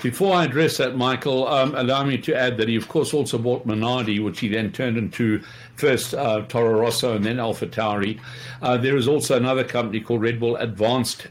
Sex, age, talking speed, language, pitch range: male, 60-79, 205 wpm, English, 110-125 Hz